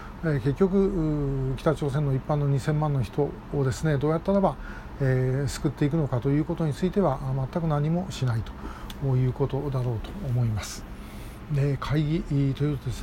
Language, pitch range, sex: Japanese, 135-175 Hz, male